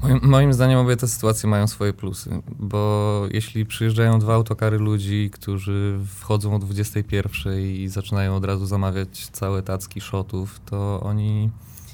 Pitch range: 95-110 Hz